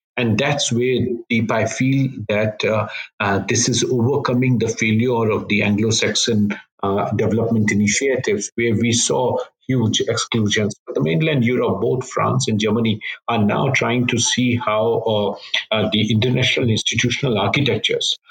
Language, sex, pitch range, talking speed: English, male, 105-125 Hz, 145 wpm